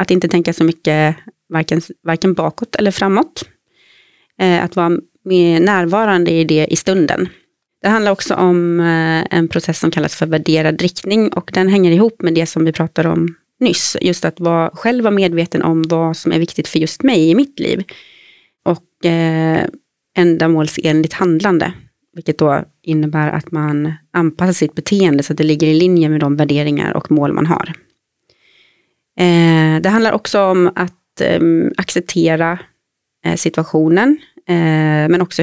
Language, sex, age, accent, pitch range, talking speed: Swedish, female, 30-49, native, 160-185 Hz, 165 wpm